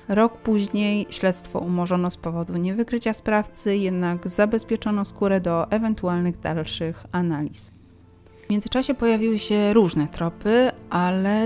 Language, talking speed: Polish, 115 wpm